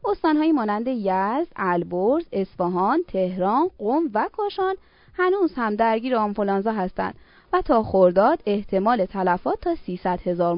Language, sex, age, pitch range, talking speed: Persian, female, 20-39, 190-290 Hz, 125 wpm